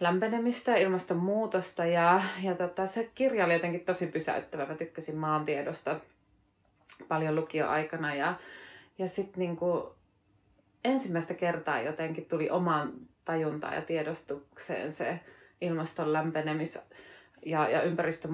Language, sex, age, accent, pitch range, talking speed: Finnish, female, 30-49, native, 160-185 Hz, 115 wpm